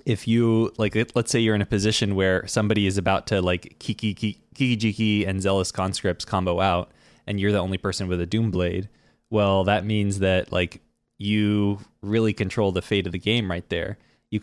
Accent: American